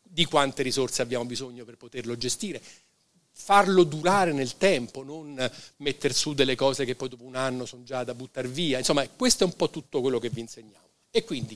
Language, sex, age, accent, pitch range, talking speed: Italian, male, 50-69, native, 120-150 Hz, 200 wpm